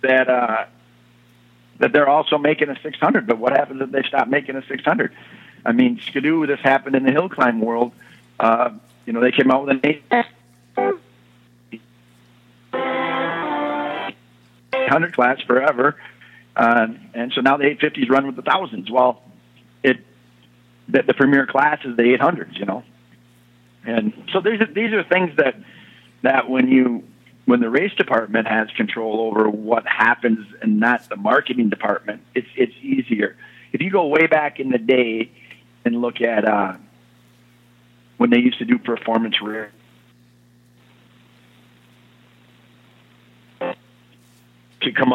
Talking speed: 150 wpm